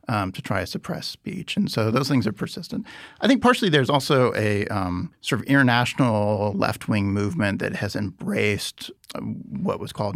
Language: English